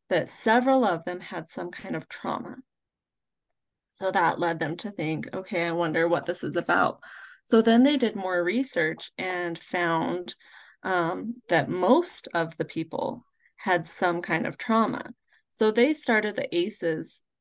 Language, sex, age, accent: English, female, 30-49, American